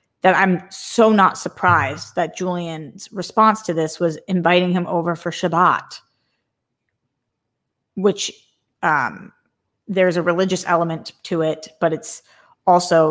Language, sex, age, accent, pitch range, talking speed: English, female, 20-39, American, 165-195 Hz, 125 wpm